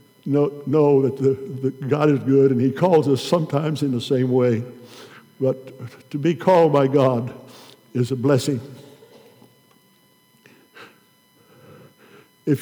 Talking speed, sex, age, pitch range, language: 120 wpm, male, 60-79, 135-170 Hz, English